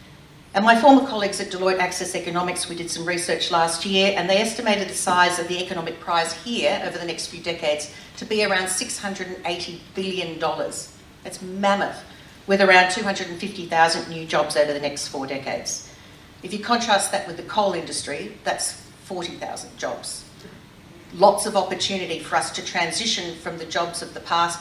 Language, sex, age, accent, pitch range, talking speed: English, female, 50-69, Australian, 170-200 Hz, 170 wpm